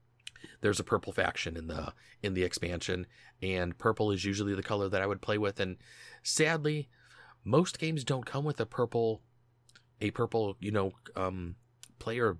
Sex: male